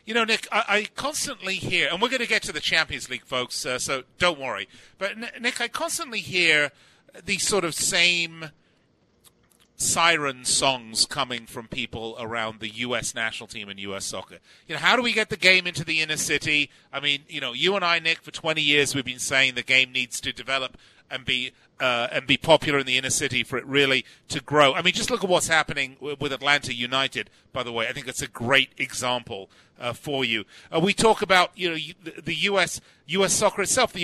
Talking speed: 220 wpm